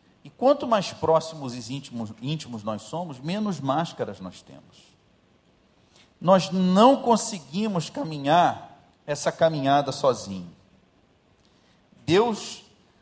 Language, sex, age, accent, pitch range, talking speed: Portuguese, male, 40-59, Brazilian, 130-215 Hz, 90 wpm